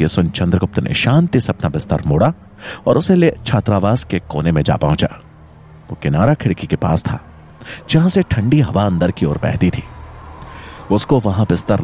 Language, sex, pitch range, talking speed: English, male, 85-125 Hz, 175 wpm